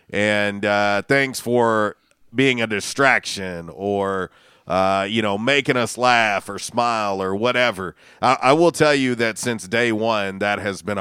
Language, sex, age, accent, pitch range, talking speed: English, male, 40-59, American, 105-130 Hz, 165 wpm